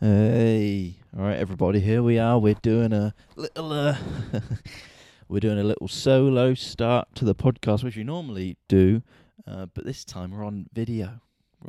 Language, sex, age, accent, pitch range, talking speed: English, male, 20-39, British, 90-115 Hz, 170 wpm